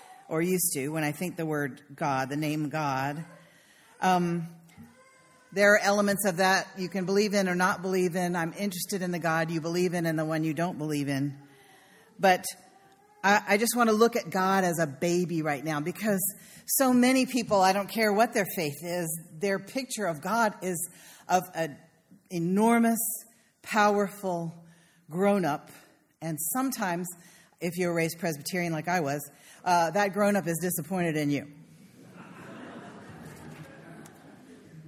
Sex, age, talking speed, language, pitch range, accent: female, 50-69, 160 wpm, English, 165-215 Hz, American